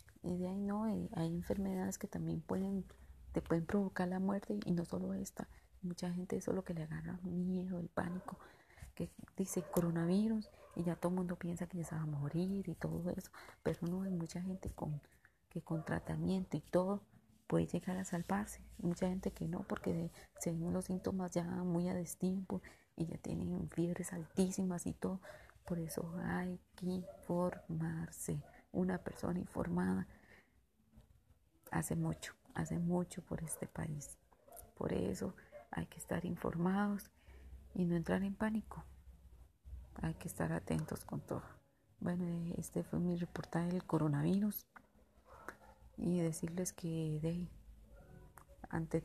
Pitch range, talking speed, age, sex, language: 155-185 Hz, 155 wpm, 30-49, female, Spanish